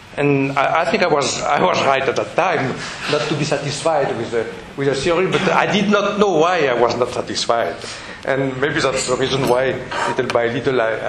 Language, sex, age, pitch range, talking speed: Italian, male, 60-79, 130-185 Hz, 215 wpm